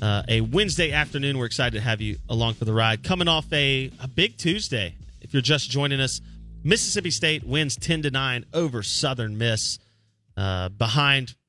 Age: 30-49